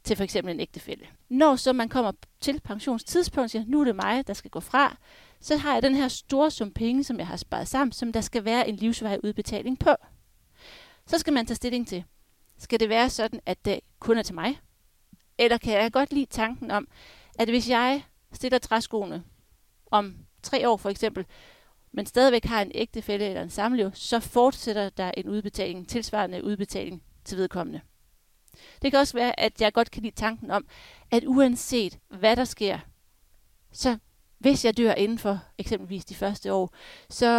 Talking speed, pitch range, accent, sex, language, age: 190 wpm, 200-255 Hz, native, female, Danish, 40-59